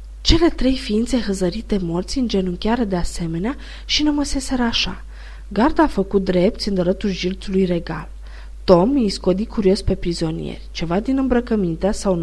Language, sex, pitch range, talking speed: Romanian, female, 170-235 Hz, 150 wpm